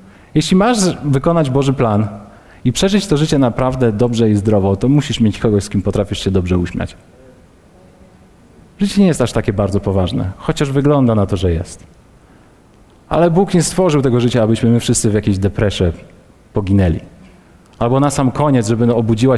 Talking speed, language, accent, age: 170 wpm, Polish, native, 40-59